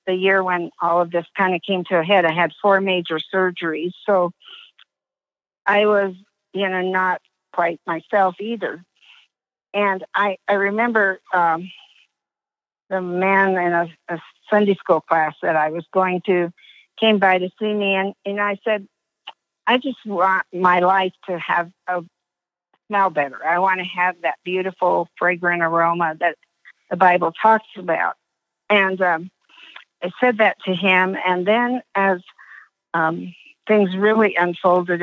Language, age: English, 50-69